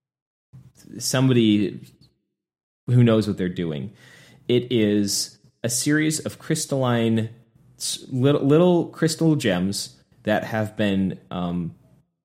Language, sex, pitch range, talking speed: English, male, 95-120 Hz, 95 wpm